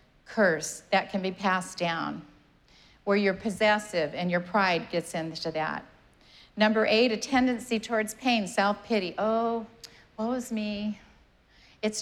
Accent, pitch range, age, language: American, 185-220 Hz, 50-69, English